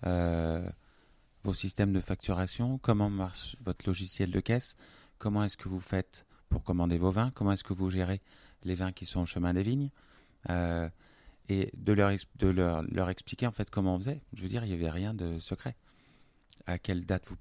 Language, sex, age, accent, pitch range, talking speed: French, male, 30-49, French, 90-100 Hz, 205 wpm